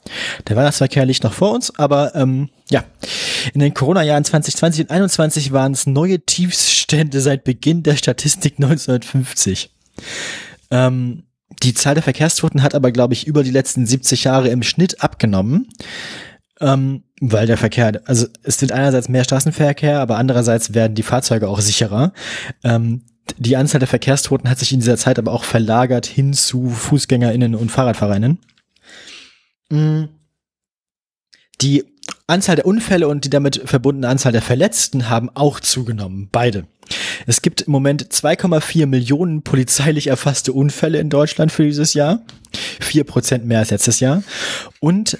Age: 20-39